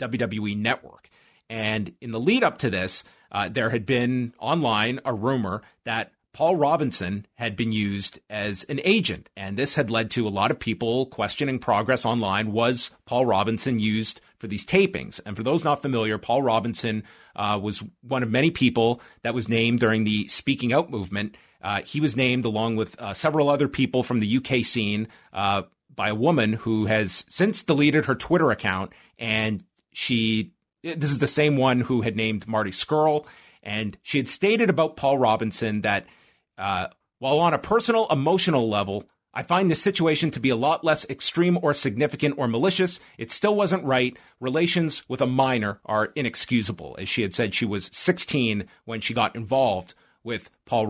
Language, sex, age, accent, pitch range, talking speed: English, male, 30-49, American, 110-145 Hz, 180 wpm